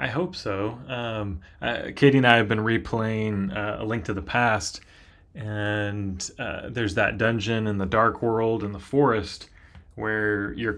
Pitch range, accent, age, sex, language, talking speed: 95-115 Hz, American, 20-39, male, English, 175 wpm